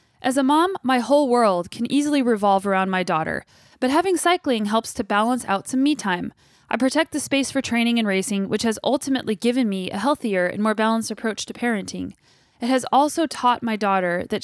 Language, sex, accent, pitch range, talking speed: English, female, American, 205-260 Hz, 210 wpm